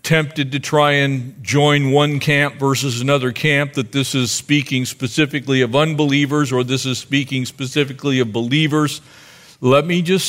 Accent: American